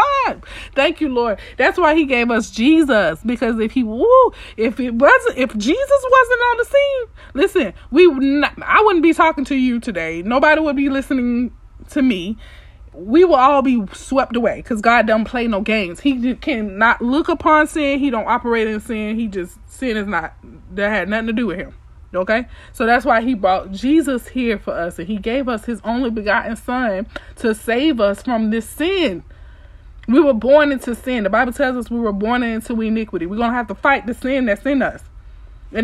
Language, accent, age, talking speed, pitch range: English, American, 20-39, 205 wpm, 215-275 Hz